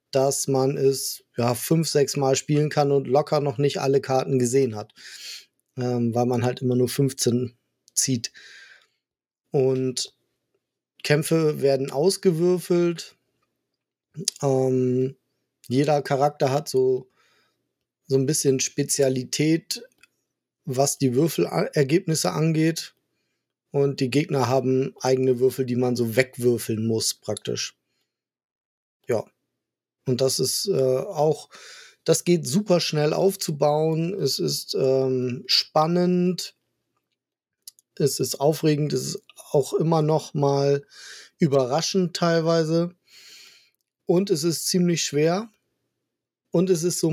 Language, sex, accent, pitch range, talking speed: German, male, German, 130-165 Hz, 115 wpm